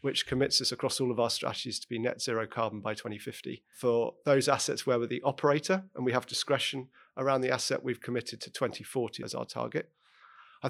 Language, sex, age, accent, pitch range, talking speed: English, male, 40-59, British, 115-135 Hz, 210 wpm